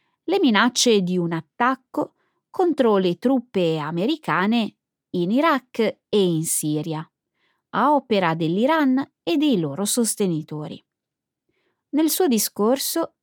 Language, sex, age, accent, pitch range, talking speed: Italian, female, 20-39, native, 170-245 Hz, 110 wpm